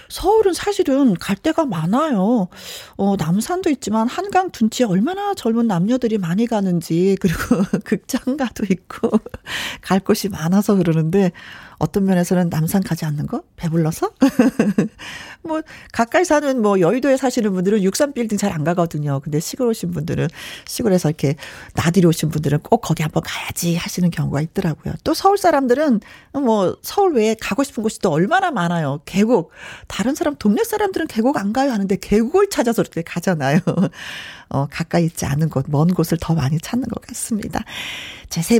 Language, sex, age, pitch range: Korean, female, 40-59, 175-270 Hz